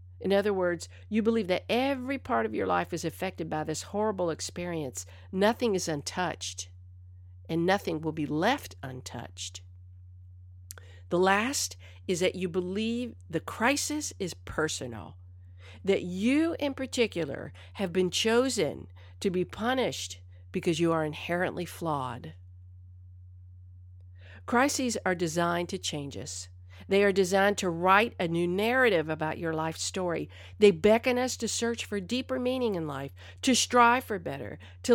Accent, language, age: American, English, 50-69